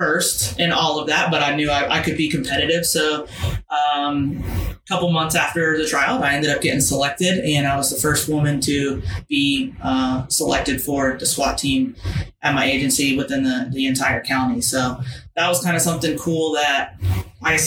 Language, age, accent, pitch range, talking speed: English, 20-39, American, 135-165 Hz, 190 wpm